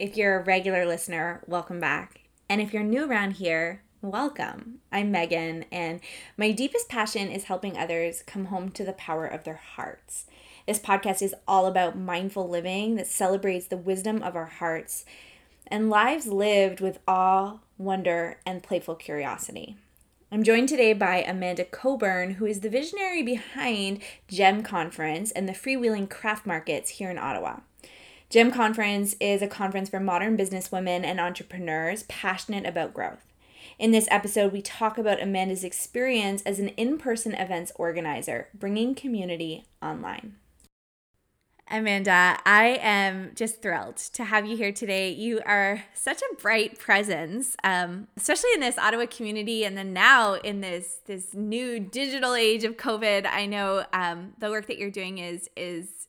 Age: 20-39